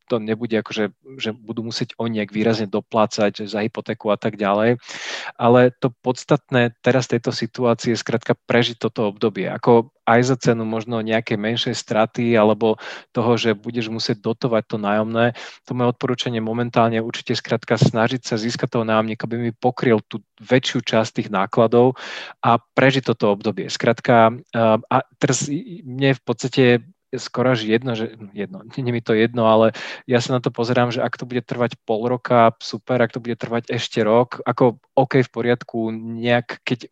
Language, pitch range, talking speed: Slovak, 110-125 Hz, 175 wpm